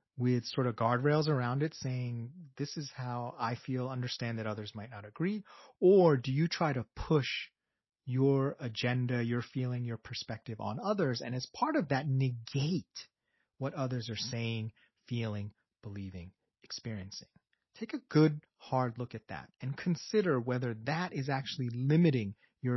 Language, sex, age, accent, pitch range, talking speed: English, male, 30-49, American, 115-145 Hz, 160 wpm